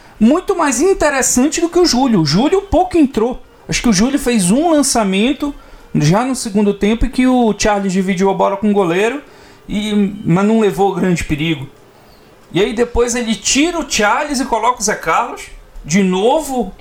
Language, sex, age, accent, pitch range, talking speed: Portuguese, male, 40-59, Brazilian, 185-255 Hz, 180 wpm